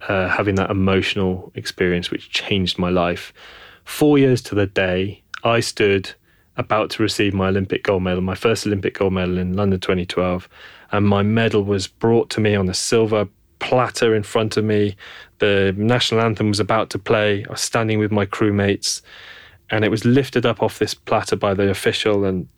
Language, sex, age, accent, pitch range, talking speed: English, male, 20-39, British, 95-115 Hz, 190 wpm